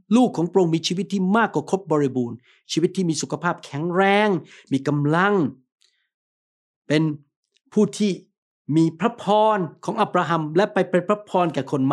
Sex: male